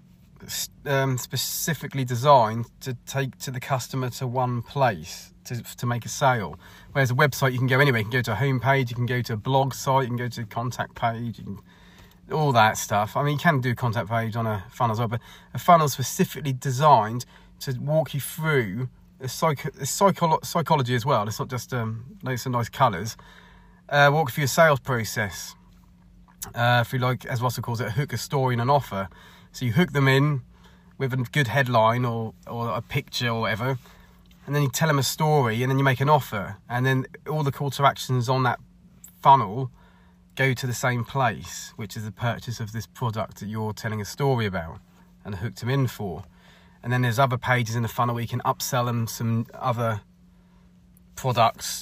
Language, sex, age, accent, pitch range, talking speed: English, male, 30-49, British, 110-135 Hz, 210 wpm